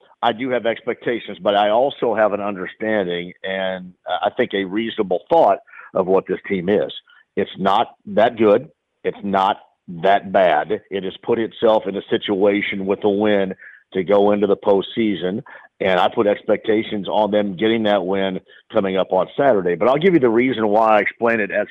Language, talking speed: English, 190 wpm